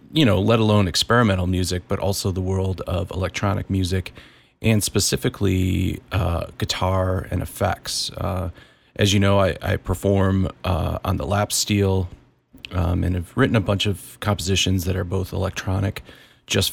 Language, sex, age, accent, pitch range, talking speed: English, male, 30-49, American, 90-105 Hz, 160 wpm